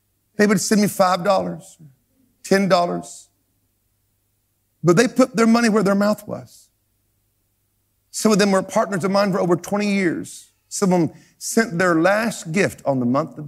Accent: American